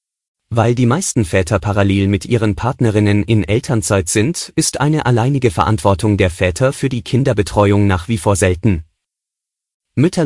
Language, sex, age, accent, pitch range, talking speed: German, male, 30-49, German, 100-135 Hz, 145 wpm